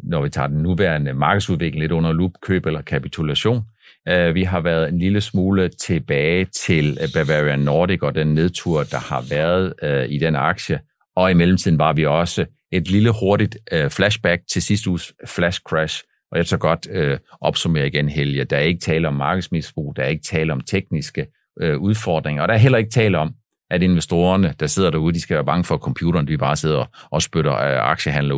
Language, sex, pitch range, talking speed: Danish, male, 80-105 Hz, 190 wpm